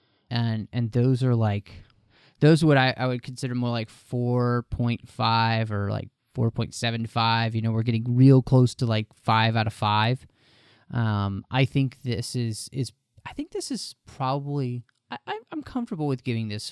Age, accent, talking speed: 30-49, American, 185 wpm